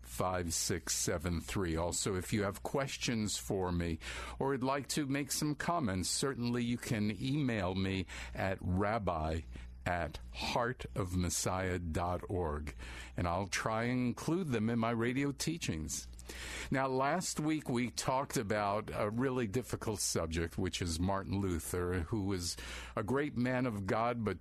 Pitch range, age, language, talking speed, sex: 90-125 Hz, 50-69, English, 150 wpm, male